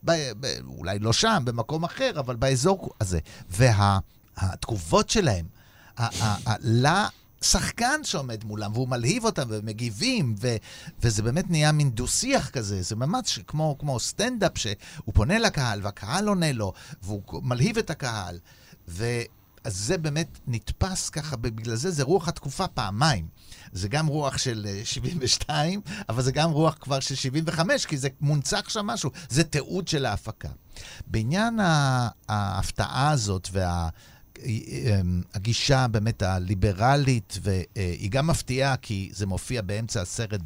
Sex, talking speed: male, 135 wpm